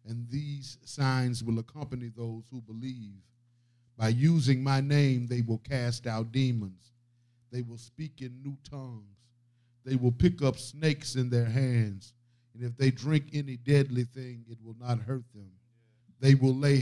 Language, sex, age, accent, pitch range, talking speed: English, male, 50-69, American, 115-125 Hz, 165 wpm